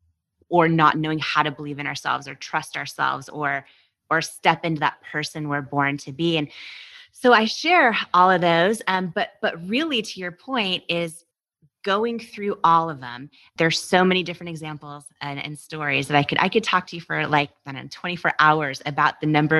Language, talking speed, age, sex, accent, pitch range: English, 195 wpm, 30-49, female, American, 160-230 Hz